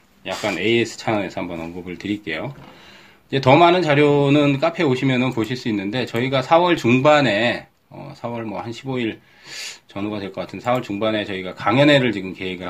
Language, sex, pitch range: Korean, male, 95-130 Hz